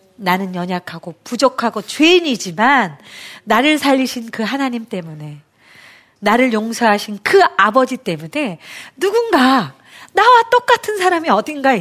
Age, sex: 40-59, female